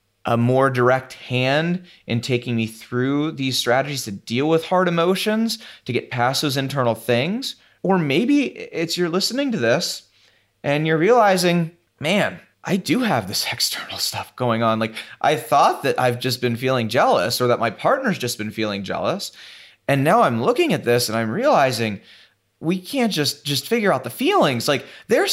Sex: male